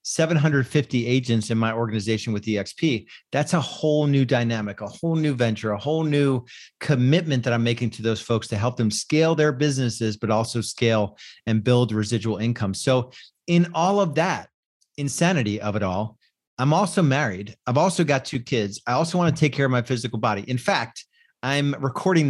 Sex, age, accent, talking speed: male, 40-59, American, 190 wpm